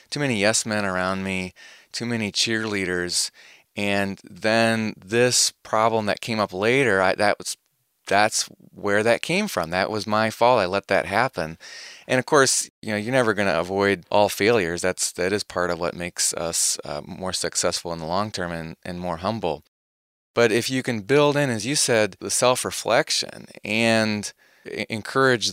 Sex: male